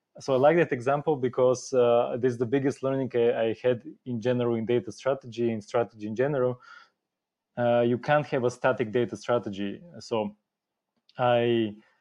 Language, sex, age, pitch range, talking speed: English, male, 20-39, 115-130 Hz, 170 wpm